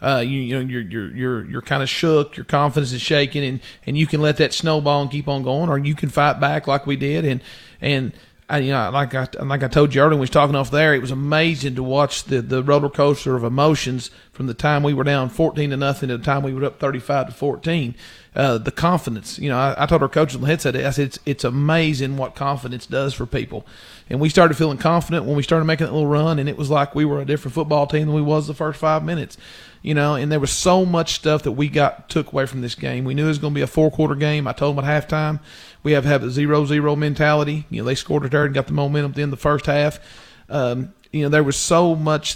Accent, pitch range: American, 135-155 Hz